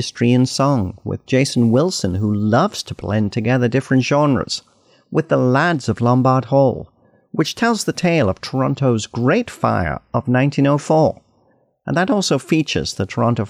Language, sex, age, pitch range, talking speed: English, male, 50-69, 110-150 Hz, 150 wpm